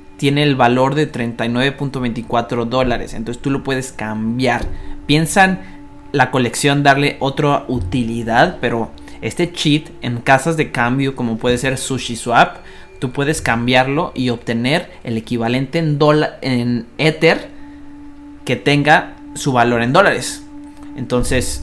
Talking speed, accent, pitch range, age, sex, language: 130 wpm, Mexican, 120-150 Hz, 30-49, male, Spanish